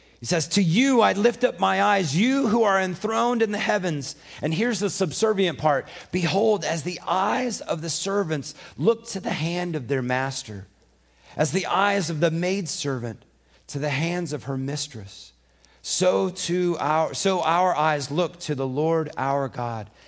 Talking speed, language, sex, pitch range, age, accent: 175 wpm, English, male, 130-190 Hz, 40-59, American